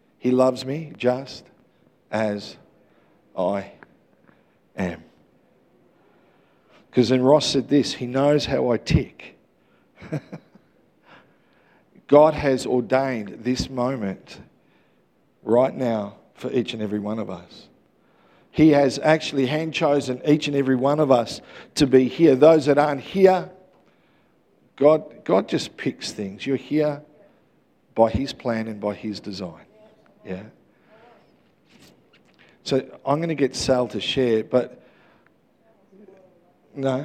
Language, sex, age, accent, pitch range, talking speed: English, male, 50-69, Australian, 115-150 Hz, 120 wpm